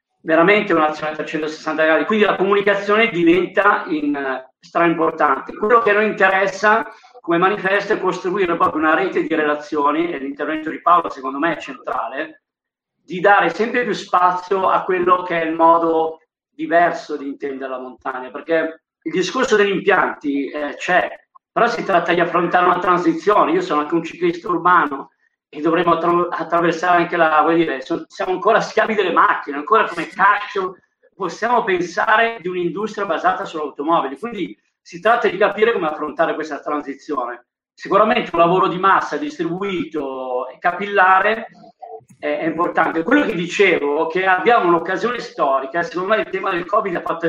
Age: 50-69